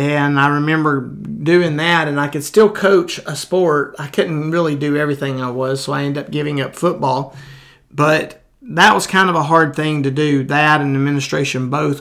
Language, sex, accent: English, male, American